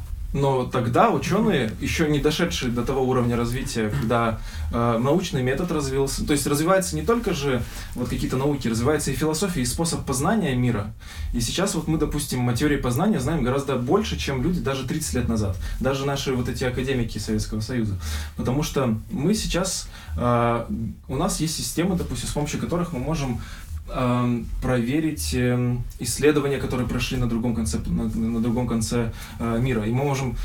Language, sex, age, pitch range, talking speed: Russian, male, 20-39, 110-145 Hz, 170 wpm